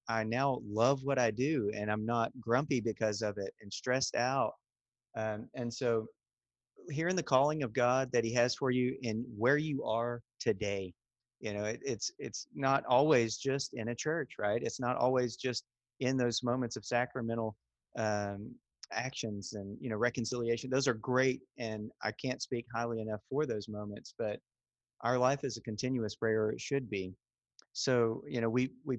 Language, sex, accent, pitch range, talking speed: English, male, American, 110-130 Hz, 185 wpm